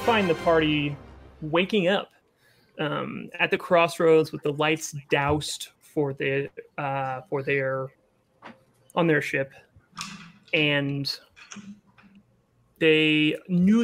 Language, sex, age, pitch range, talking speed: English, male, 30-49, 140-175 Hz, 105 wpm